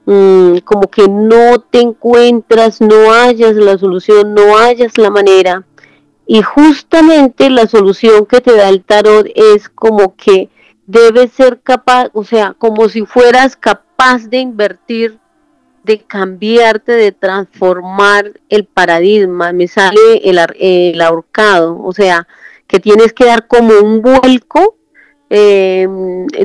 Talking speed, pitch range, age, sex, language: 130 wpm, 195-240 Hz, 30-49, female, Spanish